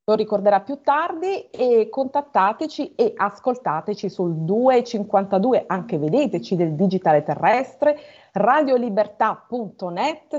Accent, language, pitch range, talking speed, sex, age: native, Italian, 180-245 Hz, 90 wpm, female, 30-49